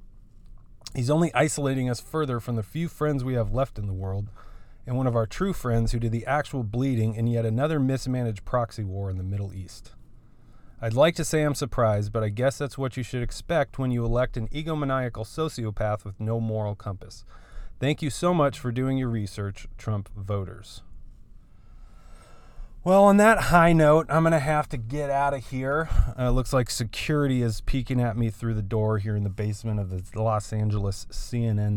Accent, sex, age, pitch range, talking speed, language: American, male, 30-49, 105-135 Hz, 195 wpm, English